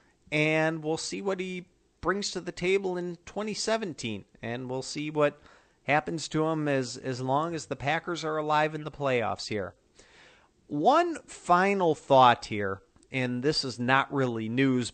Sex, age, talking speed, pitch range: male, 40-59, 160 wpm, 120-155 Hz